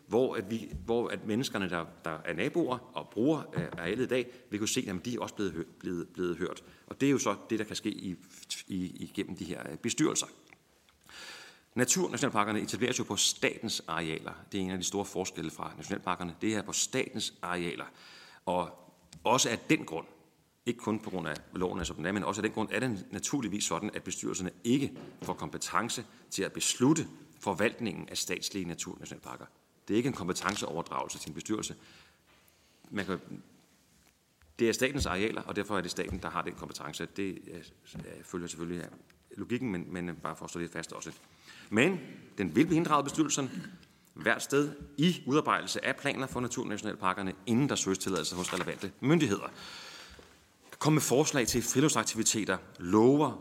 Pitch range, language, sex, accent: 90-120 Hz, Danish, male, native